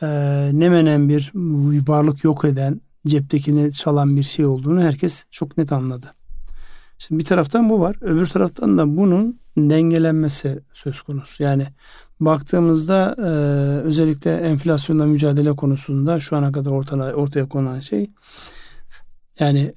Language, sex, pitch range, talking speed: Turkish, male, 140-160 Hz, 130 wpm